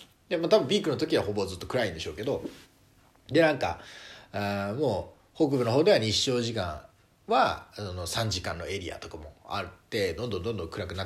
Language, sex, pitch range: Japanese, male, 95-160 Hz